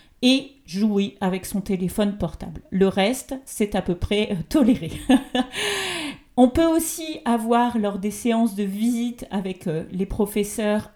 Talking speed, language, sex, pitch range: 150 wpm, French, female, 195-240 Hz